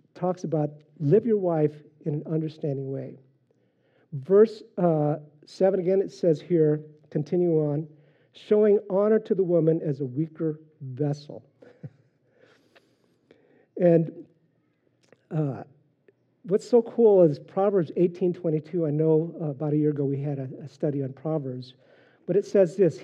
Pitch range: 140-180 Hz